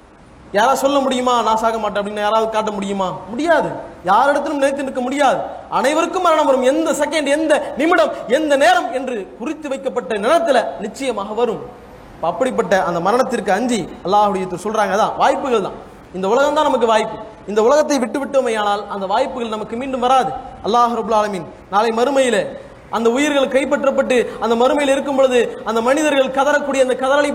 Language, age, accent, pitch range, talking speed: English, 20-39, Indian, 235-295 Hz, 160 wpm